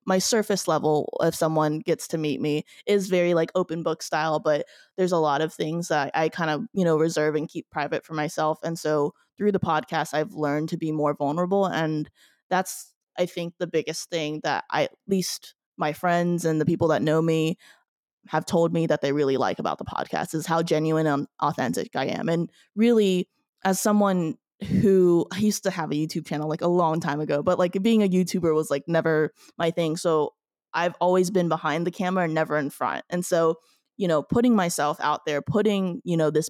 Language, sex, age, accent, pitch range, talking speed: English, female, 20-39, American, 155-180 Hz, 210 wpm